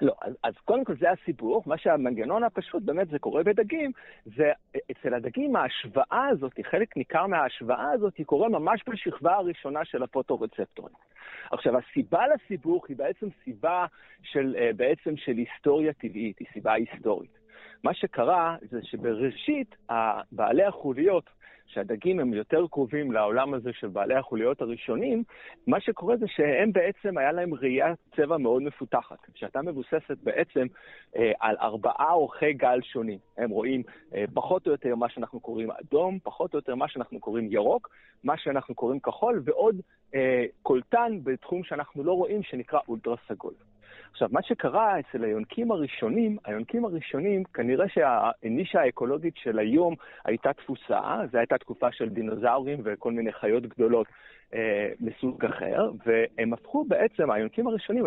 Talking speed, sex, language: 145 wpm, male, Hebrew